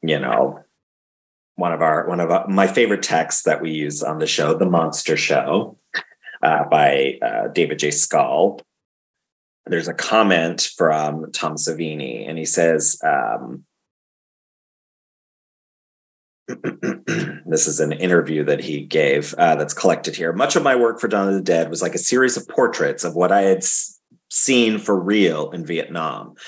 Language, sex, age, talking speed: English, male, 30-49, 160 wpm